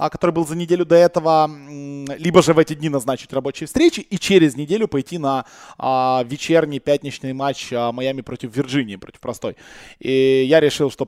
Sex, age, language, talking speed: male, 20-39, Russian, 170 wpm